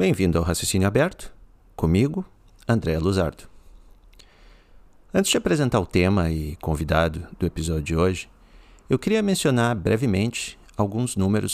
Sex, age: male, 50-69